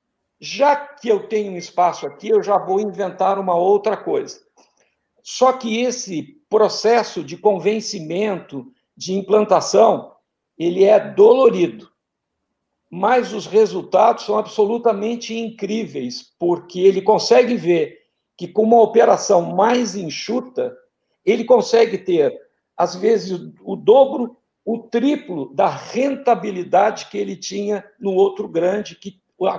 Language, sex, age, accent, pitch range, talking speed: Portuguese, male, 60-79, Brazilian, 190-240 Hz, 120 wpm